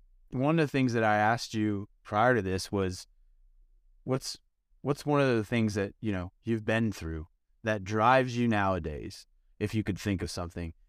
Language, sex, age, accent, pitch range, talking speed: English, male, 30-49, American, 90-125 Hz, 185 wpm